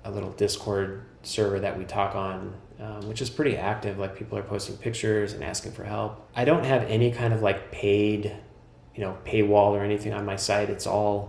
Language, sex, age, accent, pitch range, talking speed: English, male, 20-39, American, 100-110 Hz, 215 wpm